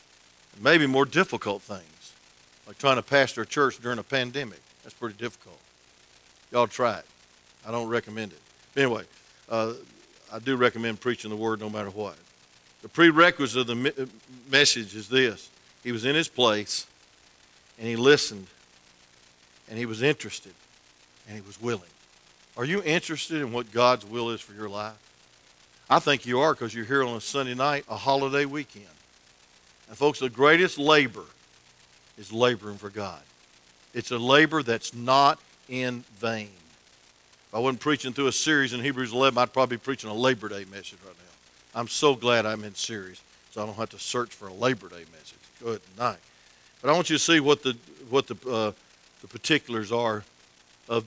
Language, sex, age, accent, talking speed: English, male, 50-69, American, 180 wpm